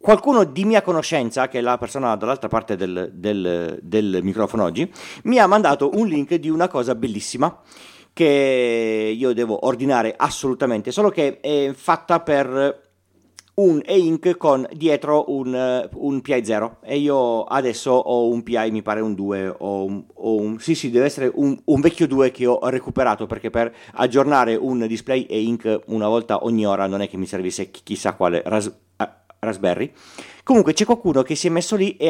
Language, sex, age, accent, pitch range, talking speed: Italian, male, 40-59, native, 115-180 Hz, 170 wpm